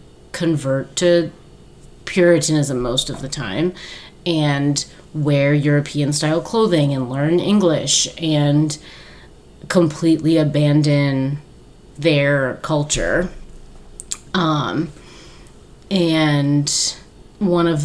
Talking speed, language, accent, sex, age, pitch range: 75 wpm, English, American, female, 30-49, 135-160 Hz